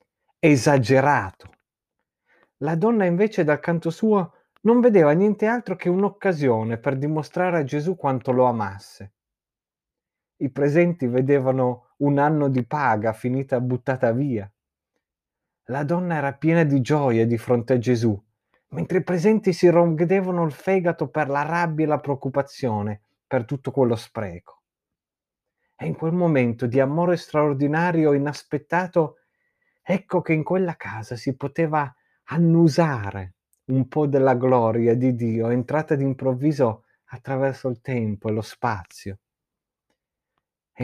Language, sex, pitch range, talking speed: Italian, male, 125-165 Hz, 130 wpm